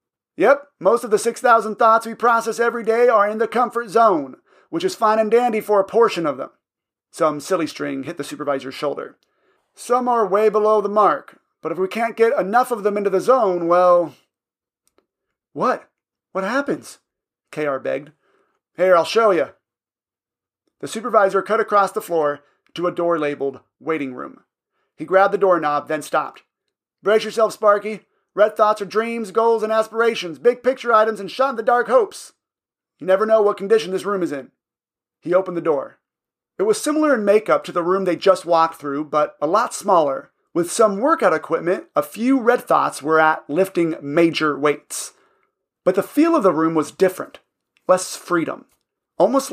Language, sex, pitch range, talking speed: English, male, 165-230 Hz, 180 wpm